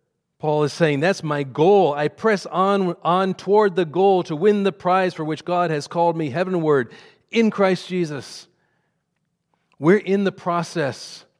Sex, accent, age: male, American, 40-59